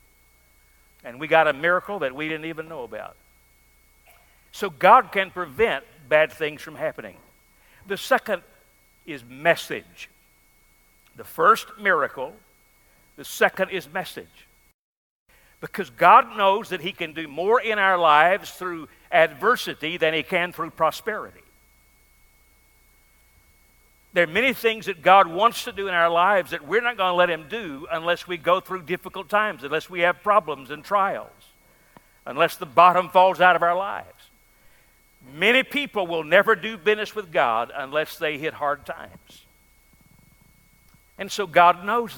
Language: English